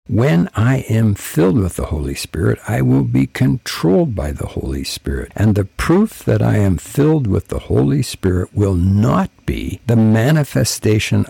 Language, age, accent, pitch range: English, 60-79, American, 95-120 Hz